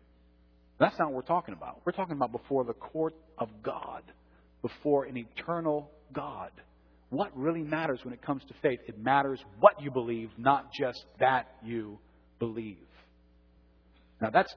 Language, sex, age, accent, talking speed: English, male, 50-69, American, 155 wpm